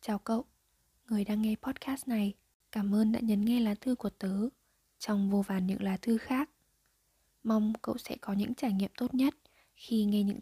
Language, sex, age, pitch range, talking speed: Vietnamese, female, 20-39, 200-240 Hz, 200 wpm